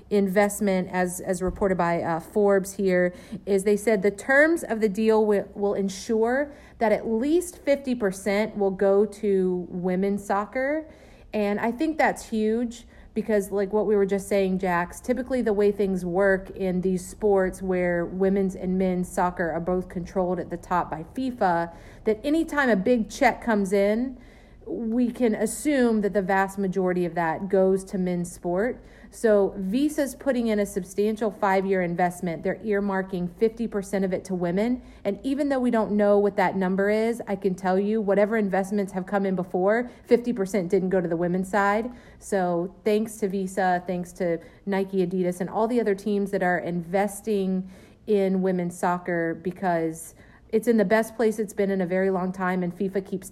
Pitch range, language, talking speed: 185-220 Hz, English, 180 wpm